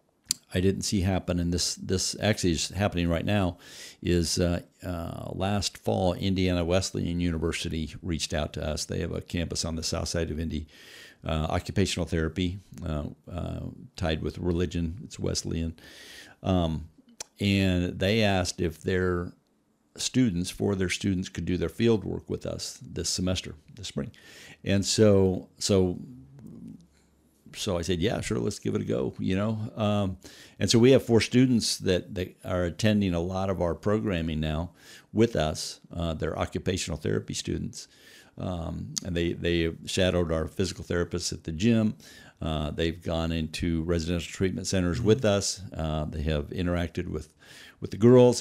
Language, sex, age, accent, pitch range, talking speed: English, male, 50-69, American, 85-100 Hz, 165 wpm